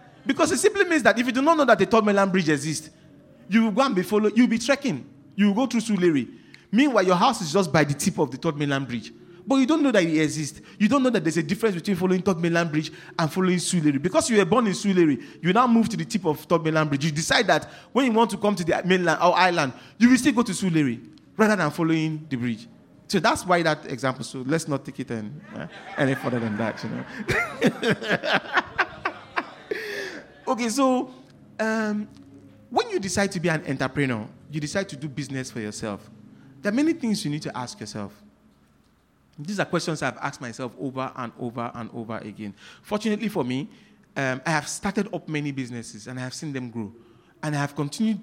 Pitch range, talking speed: 130-210 Hz, 225 wpm